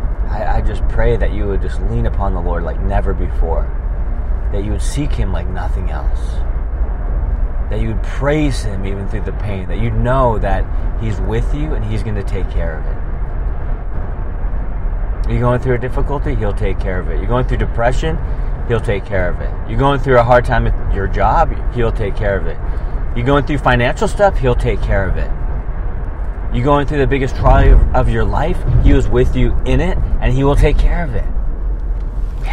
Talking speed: 205 wpm